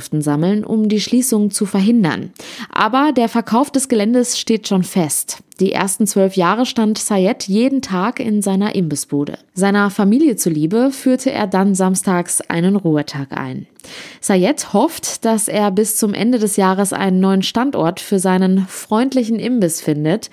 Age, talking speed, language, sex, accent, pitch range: 20-39, 155 wpm, German, female, German, 185-240 Hz